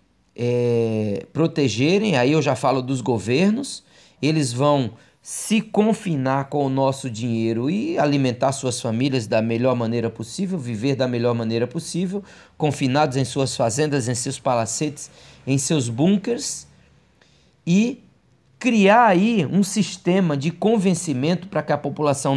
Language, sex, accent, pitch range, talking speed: Portuguese, male, Brazilian, 125-180 Hz, 130 wpm